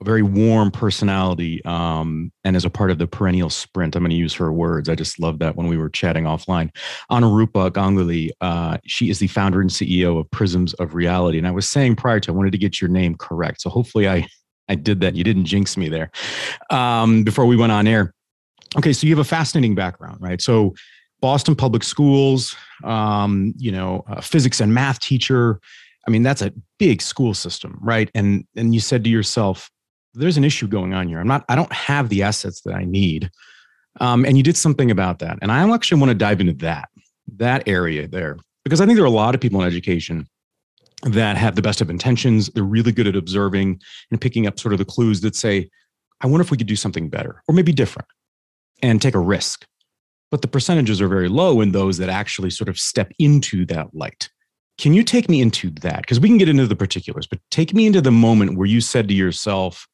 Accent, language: American, English